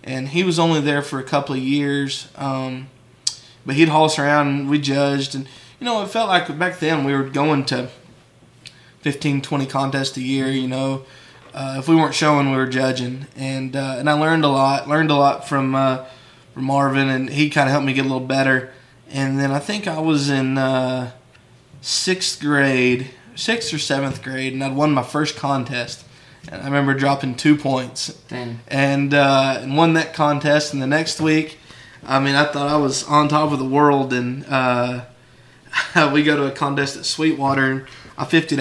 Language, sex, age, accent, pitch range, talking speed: English, male, 20-39, American, 130-150 Hz, 200 wpm